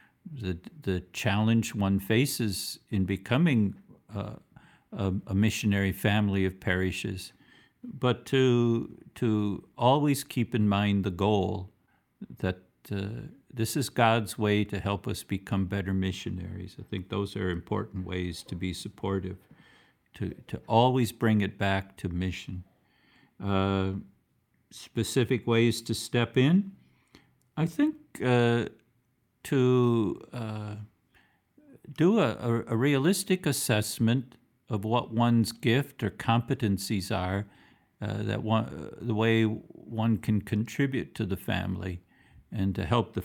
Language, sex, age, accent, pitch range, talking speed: English, male, 50-69, American, 95-120 Hz, 125 wpm